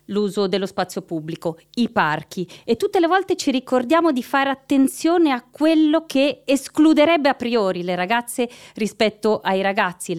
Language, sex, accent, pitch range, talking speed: Italian, female, native, 180-270 Hz, 160 wpm